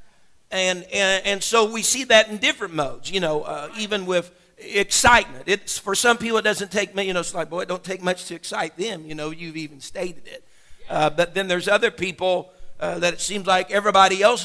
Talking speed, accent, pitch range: 225 wpm, American, 165-200 Hz